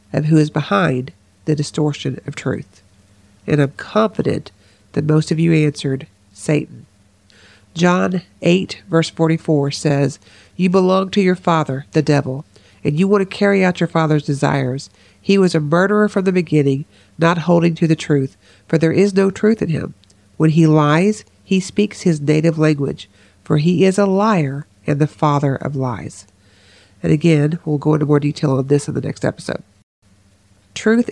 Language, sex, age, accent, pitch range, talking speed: English, female, 50-69, American, 130-180 Hz, 170 wpm